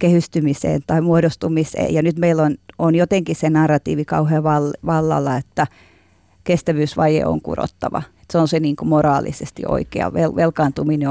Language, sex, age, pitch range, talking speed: Finnish, female, 30-49, 145-165 Hz, 135 wpm